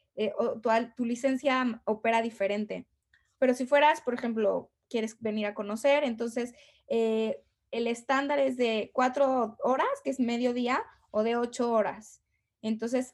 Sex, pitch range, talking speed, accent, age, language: female, 215-255 Hz, 140 wpm, Mexican, 20-39, English